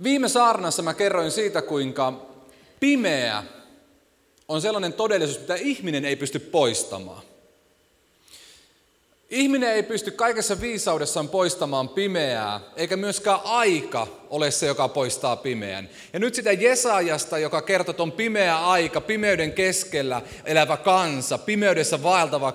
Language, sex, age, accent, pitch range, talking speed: Finnish, male, 30-49, native, 150-215 Hz, 120 wpm